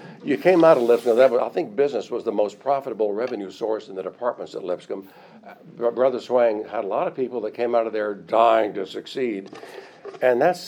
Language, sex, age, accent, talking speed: English, male, 60-79, American, 200 wpm